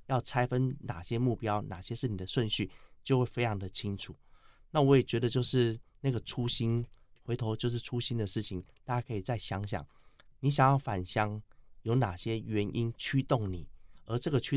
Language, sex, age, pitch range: Chinese, male, 30-49, 105-130 Hz